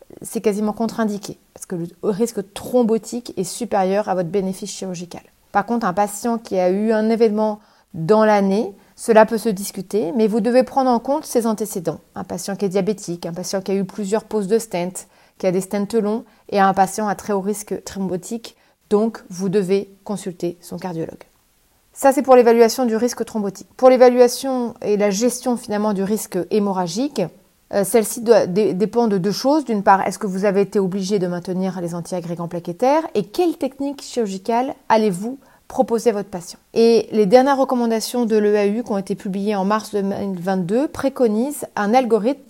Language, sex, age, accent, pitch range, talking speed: French, female, 30-49, French, 195-240 Hz, 185 wpm